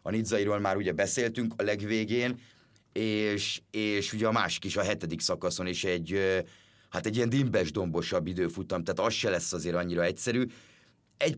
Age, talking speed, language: 30-49, 160 wpm, Hungarian